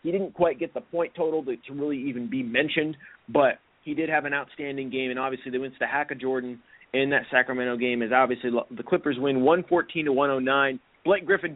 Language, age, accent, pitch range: English, 30-49, American, 130-175 Hz